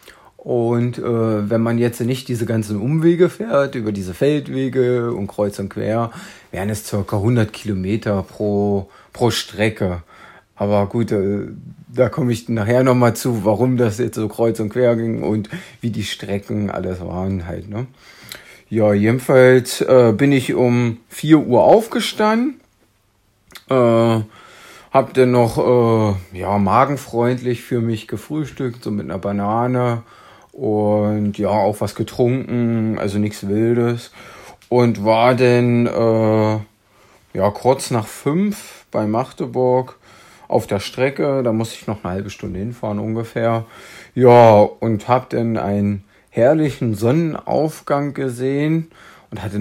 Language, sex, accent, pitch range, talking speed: German, male, German, 105-125 Hz, 135 wpm